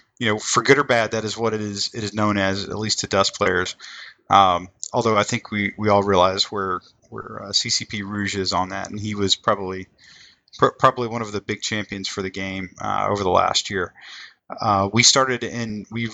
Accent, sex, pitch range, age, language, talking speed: American, male, 100-115 Hz, 30-49, English, 225 wpm